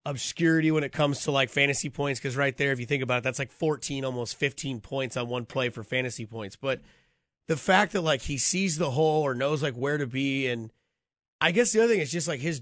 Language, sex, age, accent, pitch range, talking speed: English, male, 30-49, American, 135-165 Hz, 250 wpm